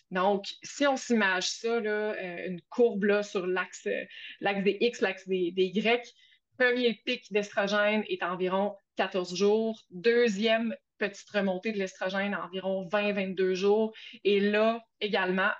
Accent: Canadian